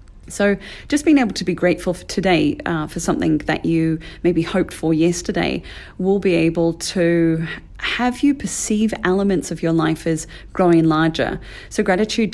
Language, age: English, 30-49